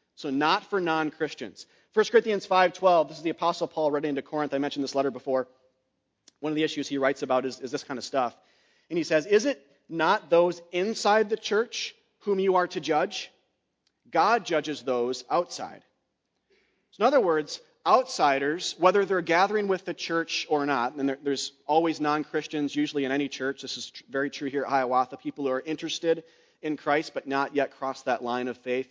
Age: 30-49